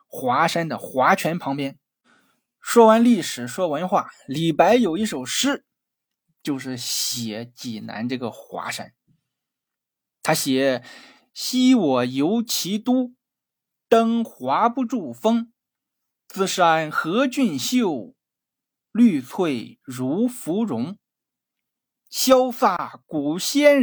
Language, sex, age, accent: Chinese, male, 20-39, native